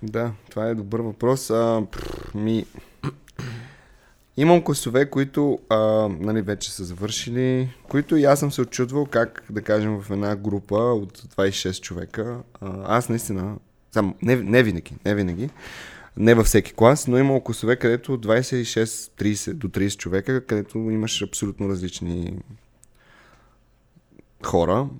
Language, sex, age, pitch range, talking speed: Bulgarian, male, 20-39, 100-125 Hz, 130 wpm